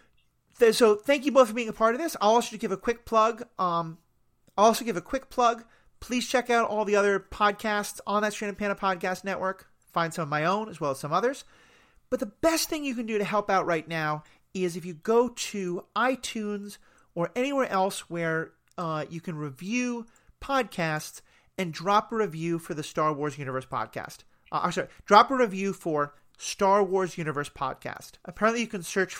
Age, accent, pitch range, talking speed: 40-59, American, 155-220 Hz, 200 wpm